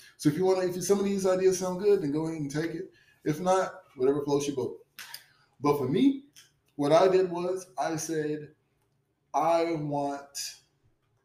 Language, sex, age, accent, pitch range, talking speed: English, male, 20-39, American, 130-150 Hz, 185 wpm